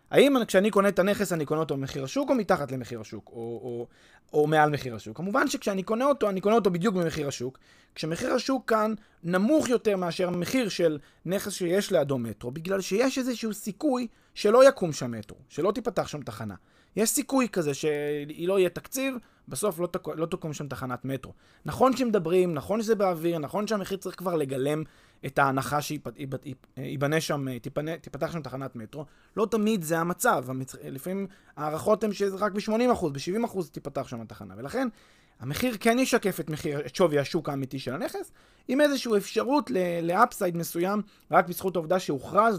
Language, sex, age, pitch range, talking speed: Hebrew, male, 20-39, 140-205 Hz, 170 wpm